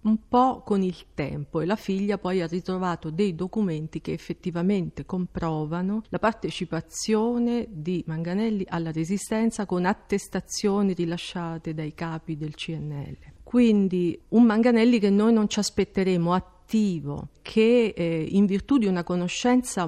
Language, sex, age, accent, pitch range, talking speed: Italian, female, 40-59, native, 165-205 Hz, 135 wpm